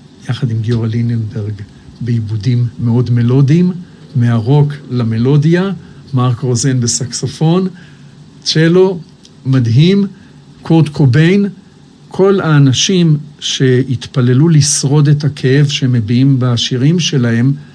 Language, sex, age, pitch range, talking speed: Hebrew, male, 60-79, 120-145 Hz, 85 wpm